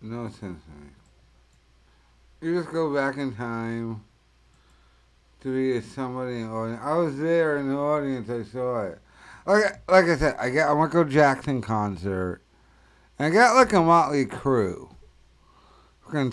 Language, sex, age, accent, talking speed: English, male, 60-79, American, 160 wpm